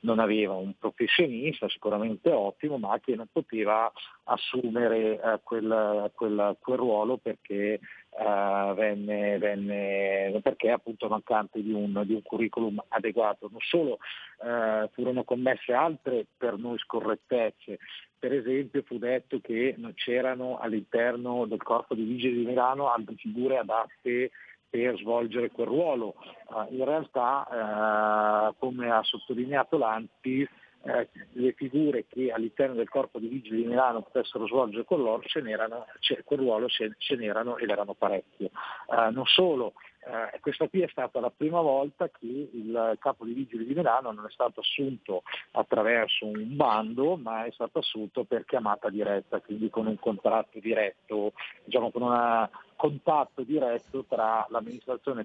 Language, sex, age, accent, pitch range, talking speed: Italian, male, 50-69, native, 110-130 Hz, 140 wpm